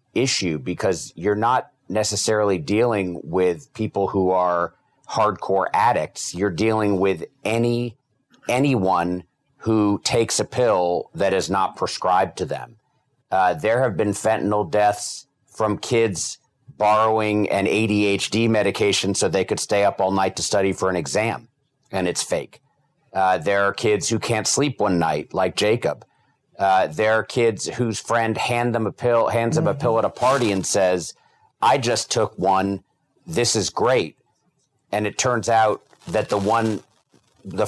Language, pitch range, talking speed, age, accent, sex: English, 95-120 Hz, 160 wpm, 40-59, American, male